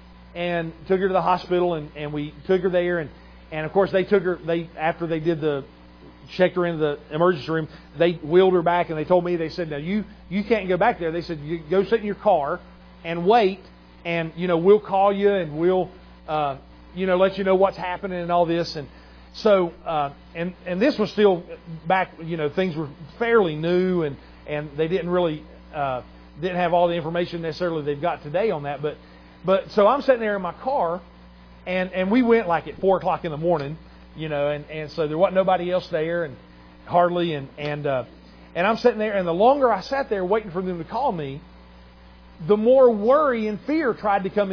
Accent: American